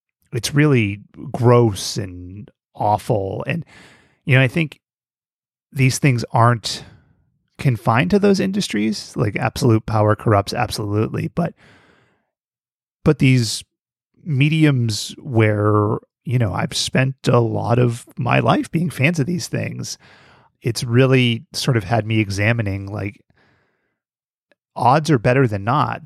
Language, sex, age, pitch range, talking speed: English, male, 30-49, 110-145 Hz, 125 wpm